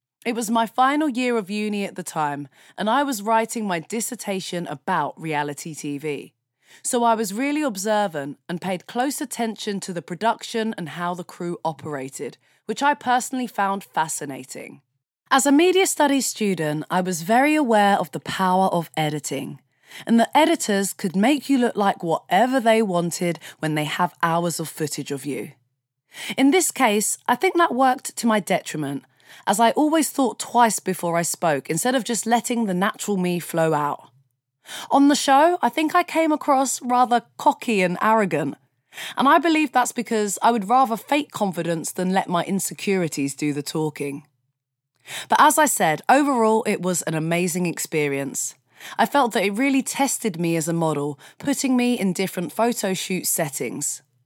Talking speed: 175 wpm